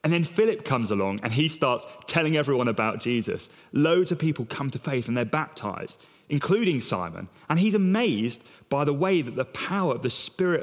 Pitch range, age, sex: 120-155 Hz, 30-49, male